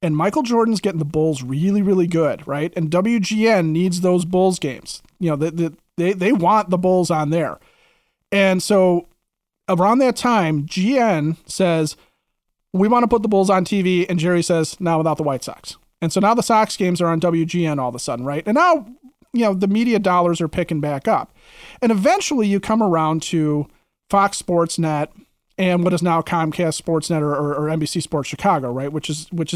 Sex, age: male, 30-49